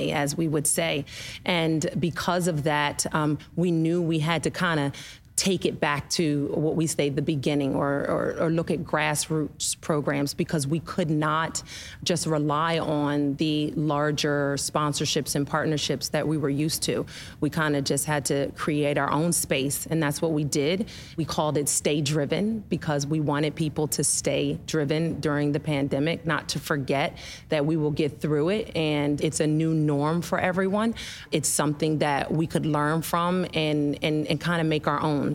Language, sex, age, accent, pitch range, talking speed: English, female, 30-49, American, 145-165 Hz, 185 wpm